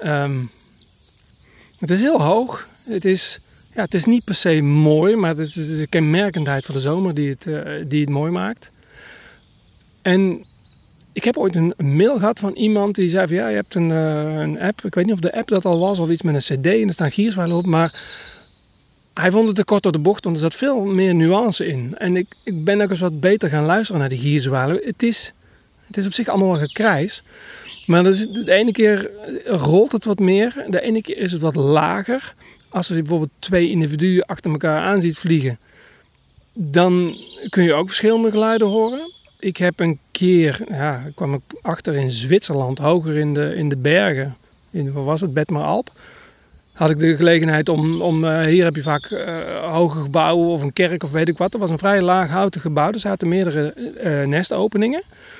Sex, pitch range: male, 155-200 Hz